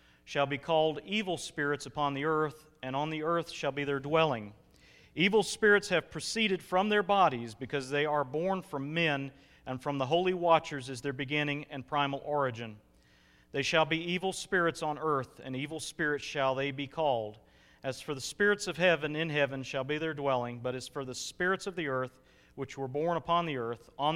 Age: 40-59